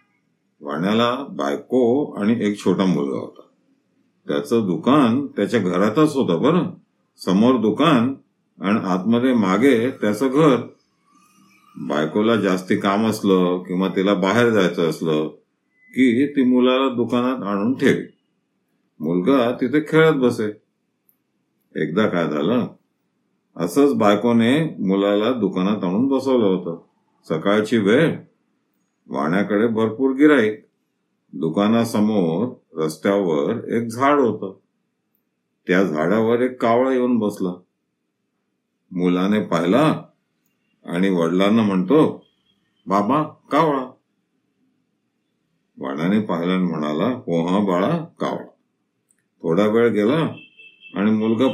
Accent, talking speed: native, 100 wpm